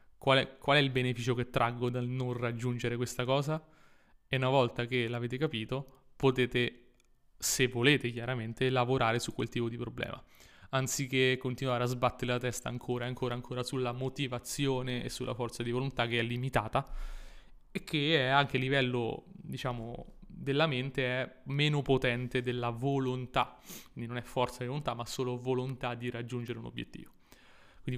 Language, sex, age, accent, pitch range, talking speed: Italian, male, 20-39, native, 125-135 Hz, 160 wpm